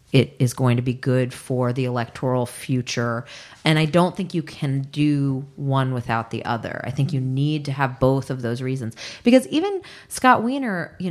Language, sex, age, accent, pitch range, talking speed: English, female, 30-49, American, 125-160 Hz, 195 wpm